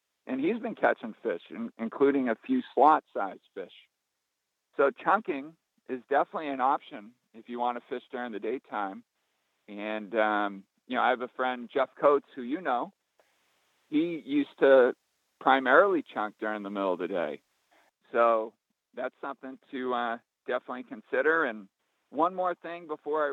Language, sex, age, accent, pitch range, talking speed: English, male, 50-69, American, 120-140 Hz, 155 wpm